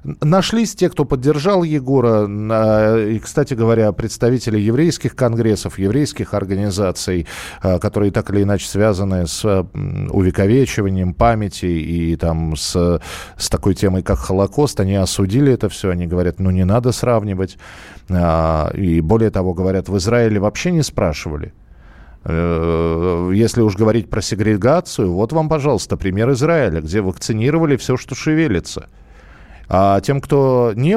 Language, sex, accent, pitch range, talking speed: Russian, male, native, 100-145 Hz, 130 wpm